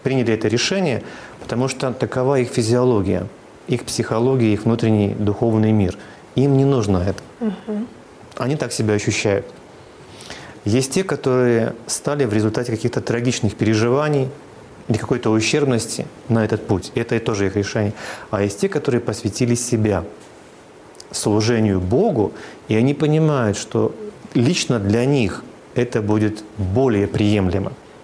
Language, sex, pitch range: Russian, male, 105-135 Hz